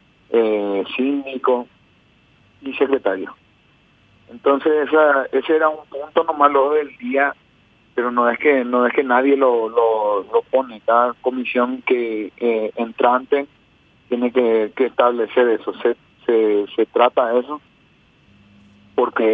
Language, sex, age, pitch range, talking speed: Spanish, male, 40-59, 110-135 Hz, 130 wpm